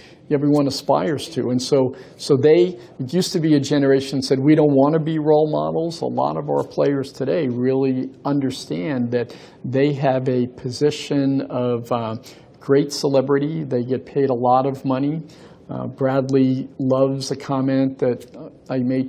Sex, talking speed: male, 165 wpm